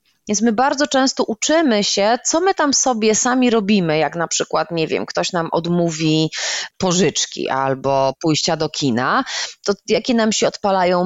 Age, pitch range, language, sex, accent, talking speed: 20-39, 165-235 Hz, Polish, female, native, 165 wpm